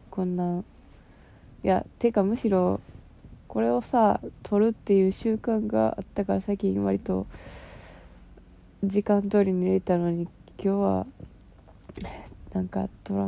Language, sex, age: Japanese, female, 20-39